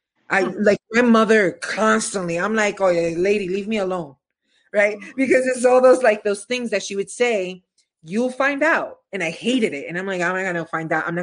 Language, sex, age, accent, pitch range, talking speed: English, female, 30-49, American, 180-235 Hz, 230 wpm